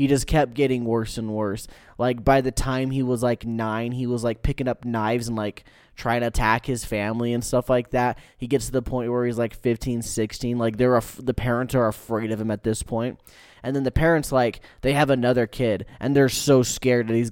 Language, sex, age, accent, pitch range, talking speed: English, male, 10-29, American, 110-130 Hz, 240 wpm